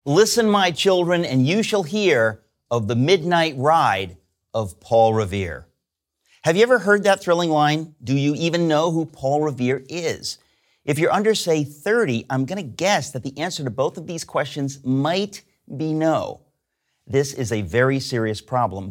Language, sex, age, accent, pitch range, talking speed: English, male, 50-69, American, 125-170 Hz, 175 wpm